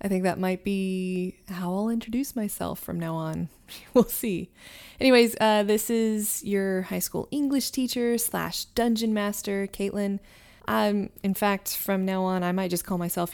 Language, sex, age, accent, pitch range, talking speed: English, female, 20-39, American, 185-220 Hz, 170 wpm